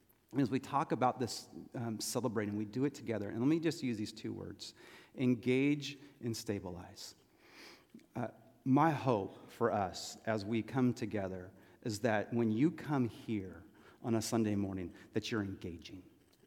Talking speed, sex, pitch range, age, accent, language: 160 wpm, male, 110-150 Hz, 40-59, American, English